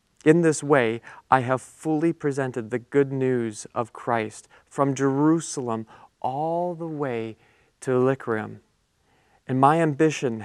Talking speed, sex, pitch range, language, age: 125 wpm, male, 125-150 Hz, English, 40-59